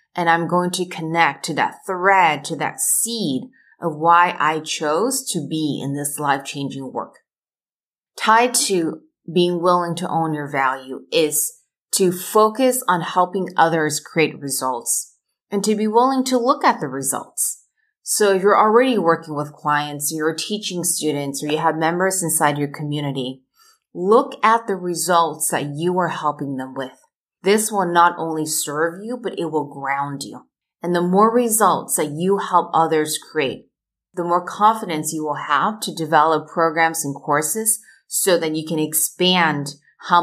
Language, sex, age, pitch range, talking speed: English, female, 30-49, 150-195 Hz, 165 wpm